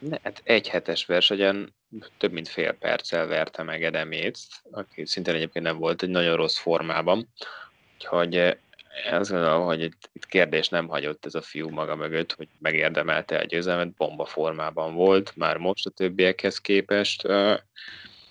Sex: male